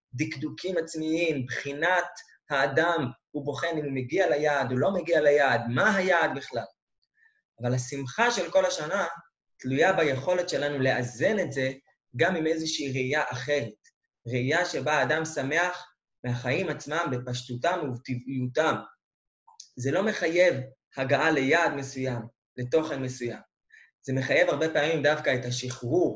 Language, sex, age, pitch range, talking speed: Hebrew, male, 20-39, 130-170 Hz, 130 wpm